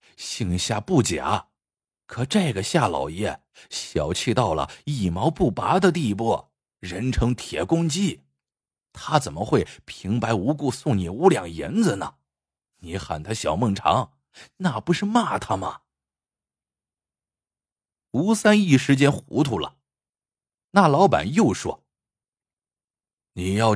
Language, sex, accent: Chinese, male, native